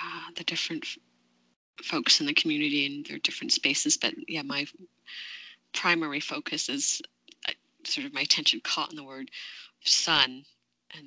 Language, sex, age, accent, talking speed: English, female, 30-49, American, 150 wpm